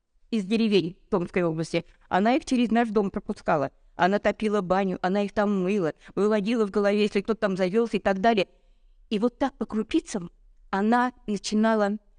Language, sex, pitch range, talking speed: Russian, female, 180-225 Hz, 165 wpm